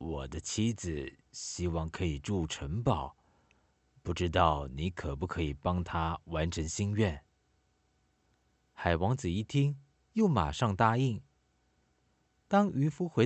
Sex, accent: male, native